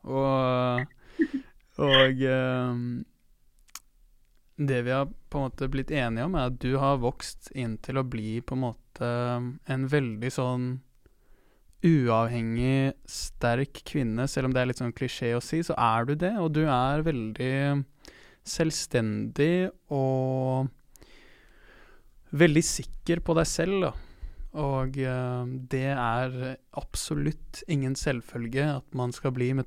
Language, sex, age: English, male, 20-39